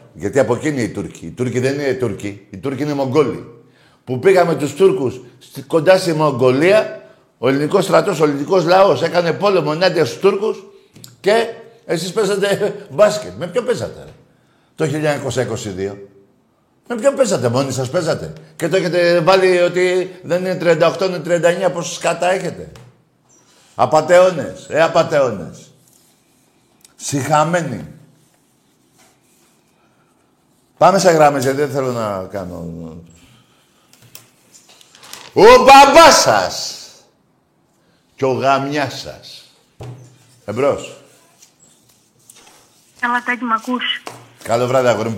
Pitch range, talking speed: 125-175 Hz, 110 wpm